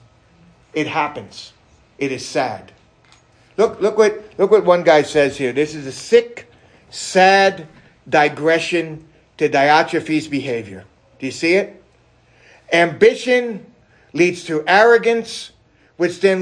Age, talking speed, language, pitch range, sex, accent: 50-69, 120 wpm, English, 160-225 Hz, male, American